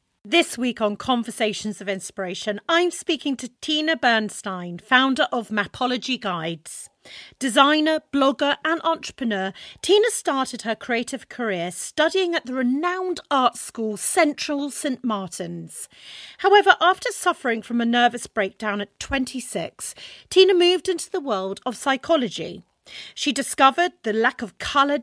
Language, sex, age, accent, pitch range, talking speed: English, female, 40-59, British, 220-320 Hz, 130 wpm